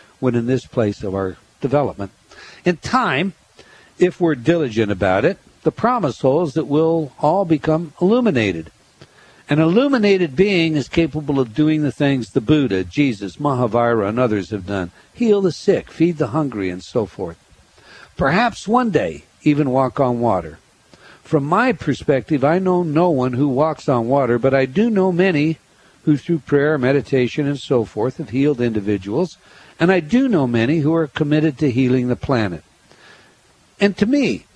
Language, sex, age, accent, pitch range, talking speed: English, male, 60-79, American, 125-170 Hz, 165 wpm